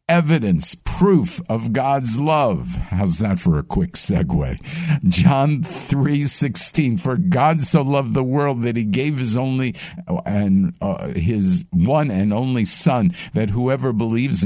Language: English